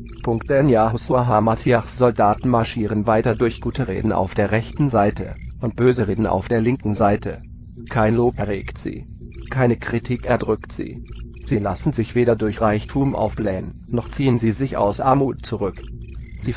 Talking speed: 150 wpm